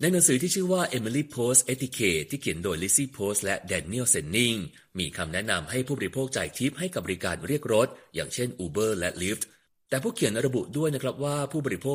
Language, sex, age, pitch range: Thai, male, 30-49, 95-135 Hz